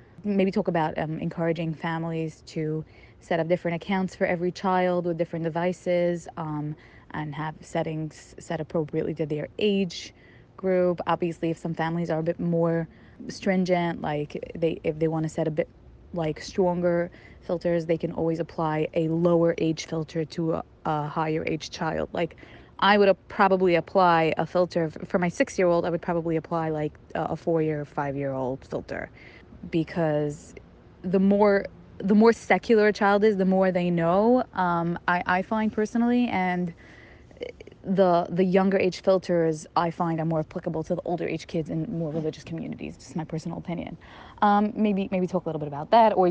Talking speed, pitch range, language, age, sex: 180 wpm, 160-190 Hz, English, 20-39, female